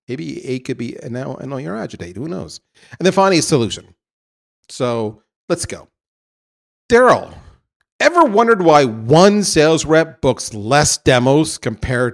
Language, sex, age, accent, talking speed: English, male, 40-59, American, 150 wpm